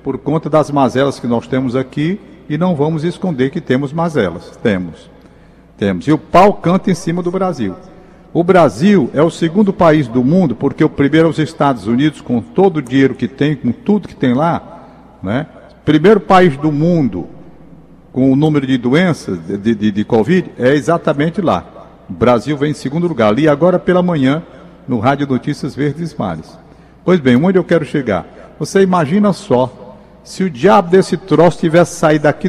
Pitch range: 145-185 Hz